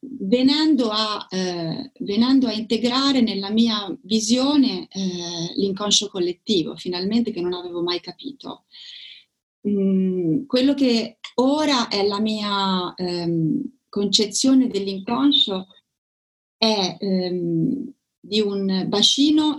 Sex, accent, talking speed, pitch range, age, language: female, native, 95 wpm, 195-260 Hz, 30-49, Italian